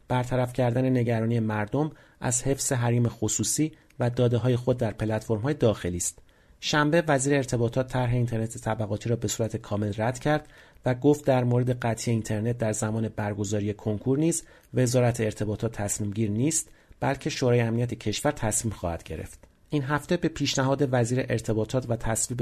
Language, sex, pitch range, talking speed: Persian, male, 110-135 Hz, 160 wpm